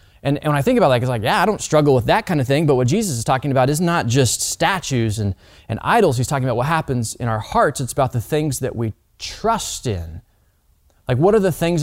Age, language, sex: 20-39, English, male